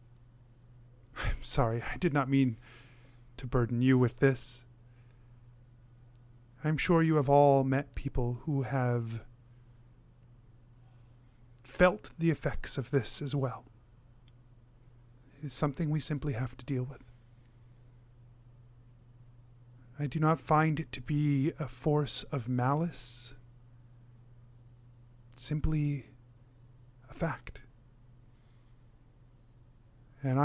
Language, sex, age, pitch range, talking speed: English, male, 30-49, 120-140 Hz, 100 wpm